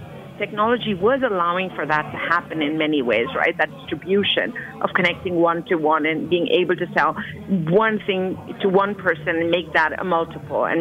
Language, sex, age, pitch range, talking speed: English, female, 50-69, 175-235 Hz, 185 wpm